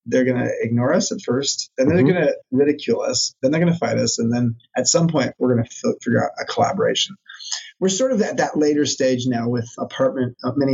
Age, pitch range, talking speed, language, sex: 30-49, 120-150 Hz, 240 wpm, English, male